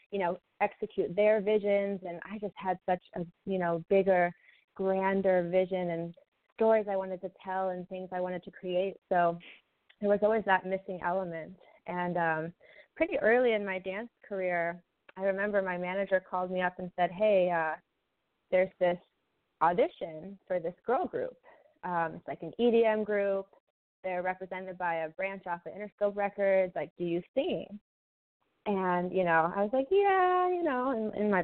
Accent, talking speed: American, 175 wpm